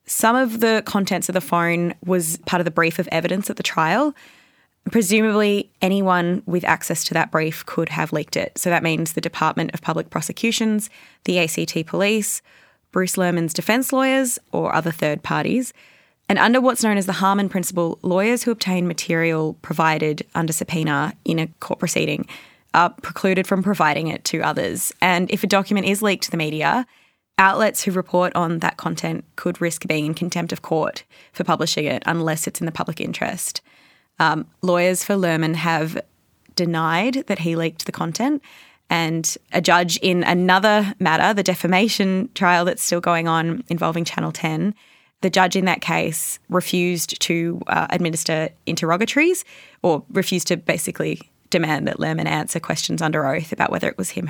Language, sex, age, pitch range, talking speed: English, female, 20-39, 165-205 Hz, 175 wpm